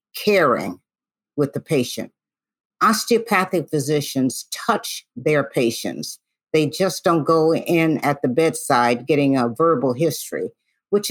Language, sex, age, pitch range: English, female, 50-69, 160-215 Hz